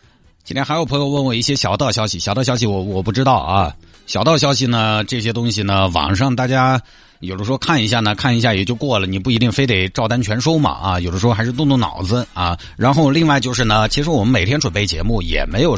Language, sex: Chinese, male